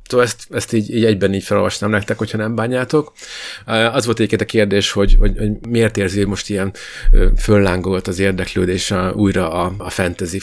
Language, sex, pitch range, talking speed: Hungarian, male, 100-115 Hz, 190 wpm